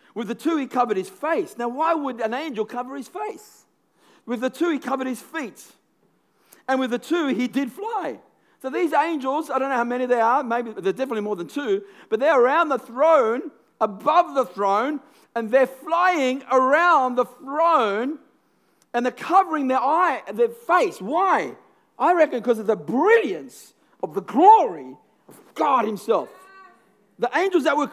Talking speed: 175 wpm